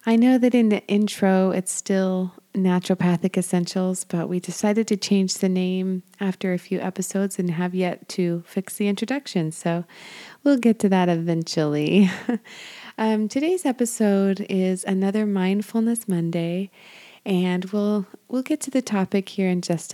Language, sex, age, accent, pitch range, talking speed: English, female, 30-49, American, 185-215 Hz, 155 wpm